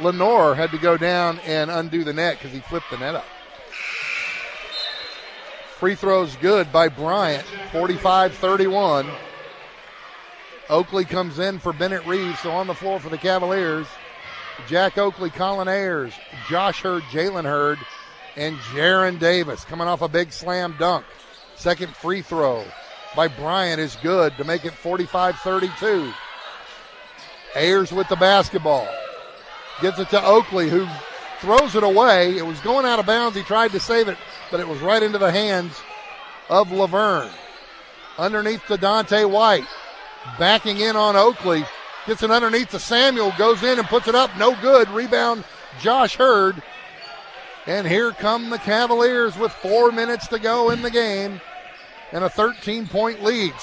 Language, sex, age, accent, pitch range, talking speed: English, male, 40-59, American, 170-215 Hz, 150 wpm